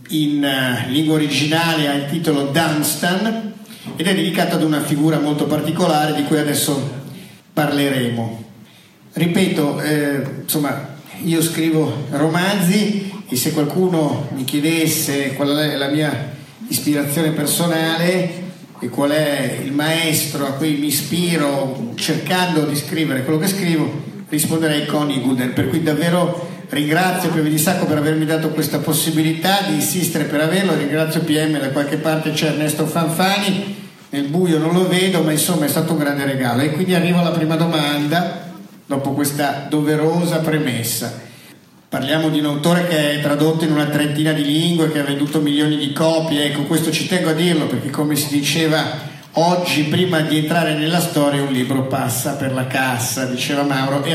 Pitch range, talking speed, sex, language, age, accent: 145-165 Hz, 160 wpm, male, Italian, 50-69, native